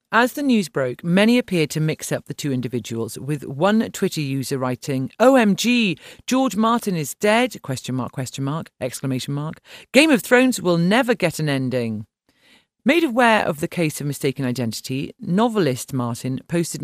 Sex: female